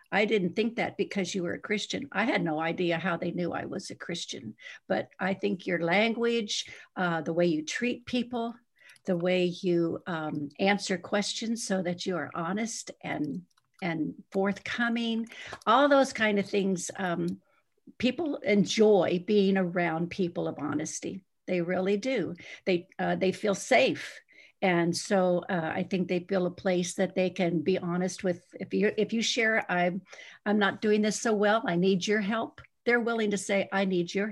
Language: English